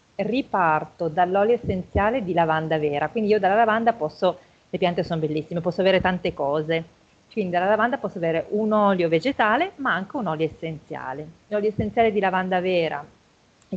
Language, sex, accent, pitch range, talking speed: Italian, female, native, 165-205 Hz, 165 wpm